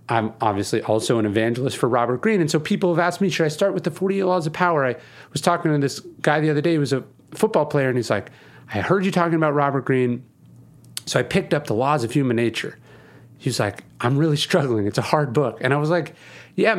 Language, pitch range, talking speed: English, 120-170 Hz, 250 wpm